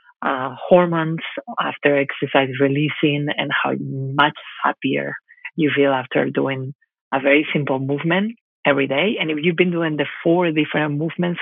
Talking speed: 140 wpm